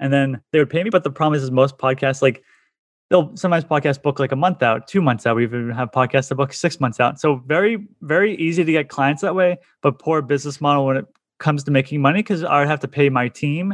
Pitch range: 130-155 Hz